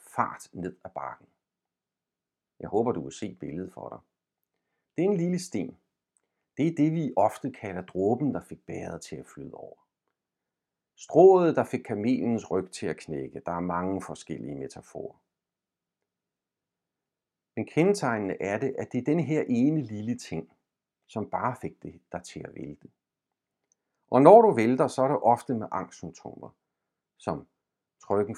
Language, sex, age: Danish, male, 50-69